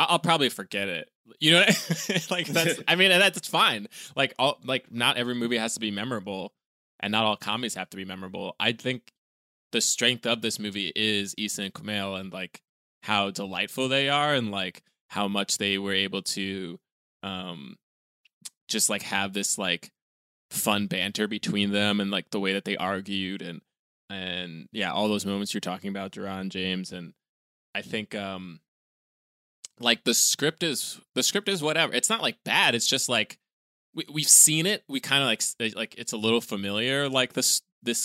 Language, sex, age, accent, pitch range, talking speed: English, male, 20-39, American, 100-130 Hz, 190 wpm